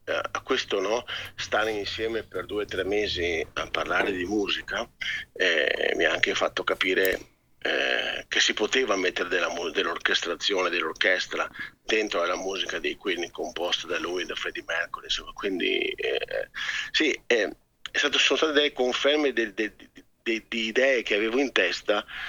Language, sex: Italian, male